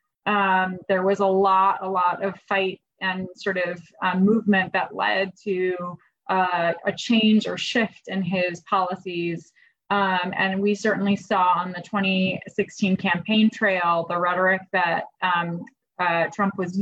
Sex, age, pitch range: female, 20-39, 185-215 Hz